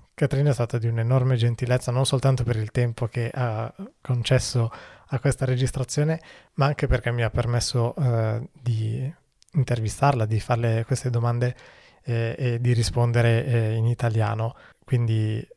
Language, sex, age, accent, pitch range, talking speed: Italian, male, 20-39, native, 115-130 Hz, 145 wpm